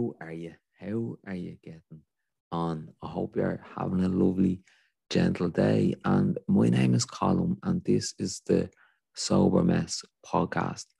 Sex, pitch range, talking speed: male, 90-100 Hz, 155 wpm